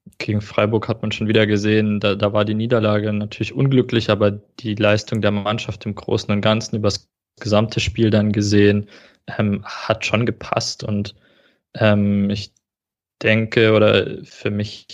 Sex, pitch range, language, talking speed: male, 105-115 Hz, German, 160 wpm